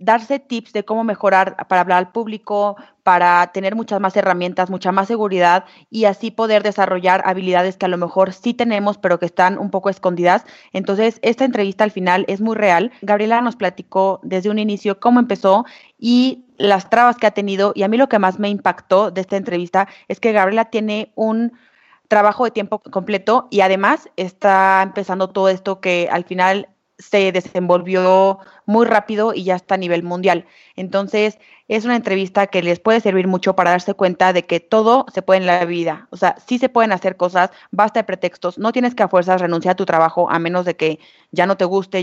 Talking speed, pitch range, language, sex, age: 205 wpm, 180-215 Hz, Spanish, female, 30-49